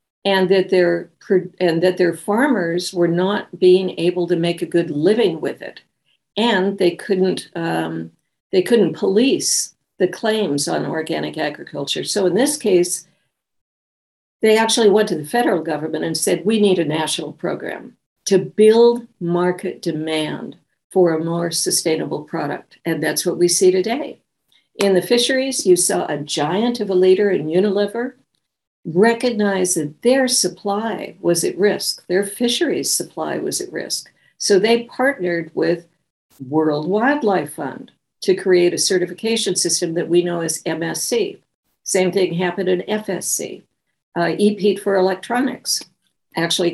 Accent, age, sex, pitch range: American, 60-79, female, 170-215 Hz